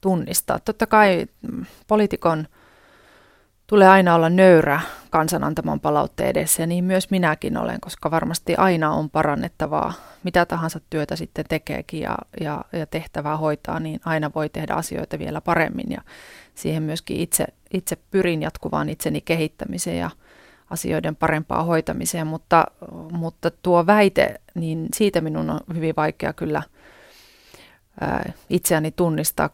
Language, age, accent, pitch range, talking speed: Finnish, 30-49, native, 155-175 Hz, 130 wpm